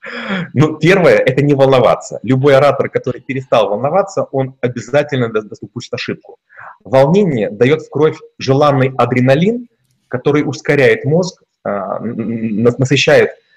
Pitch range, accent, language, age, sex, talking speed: 125-155 Hz, native, Russian, 30-49, male, 115 wpm